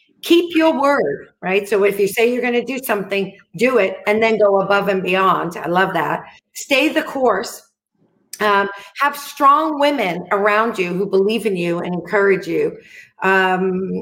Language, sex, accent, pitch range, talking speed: English, female, American, 195-245 Hz, 175 wpm